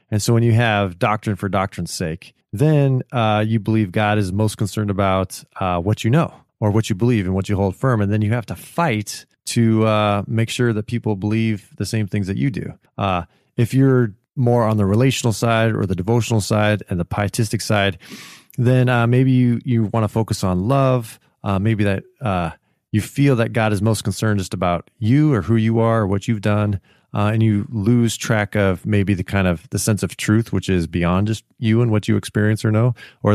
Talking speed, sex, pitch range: 220 wpm, male, 100-115 Hz